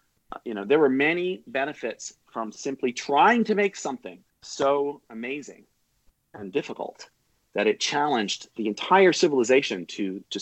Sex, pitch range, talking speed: male, 110-145 Hz, 140 wpm